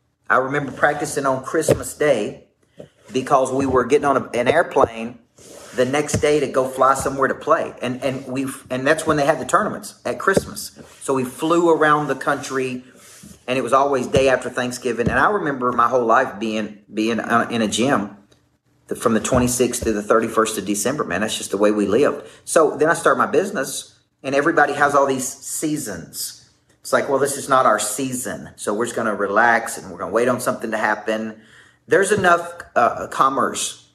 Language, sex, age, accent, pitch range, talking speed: English, male, 40-59, American, 115-145 Hz, 200 wpm